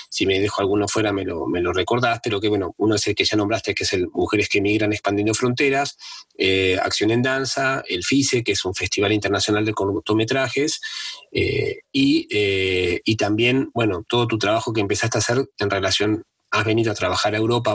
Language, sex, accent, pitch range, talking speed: Spanish, male, Argentinian, 100-125 Hz, 205 wpm